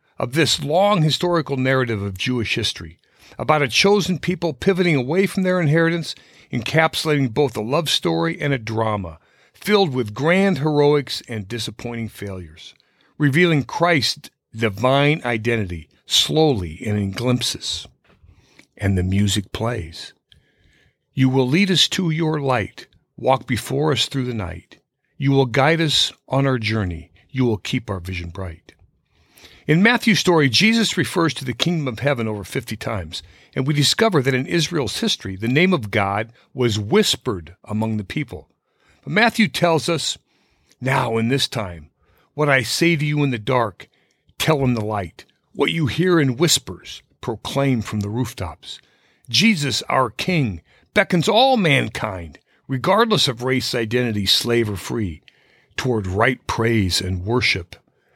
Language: English